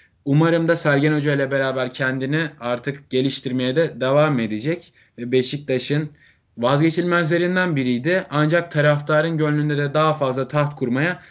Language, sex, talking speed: Turkish, male, 125 wpm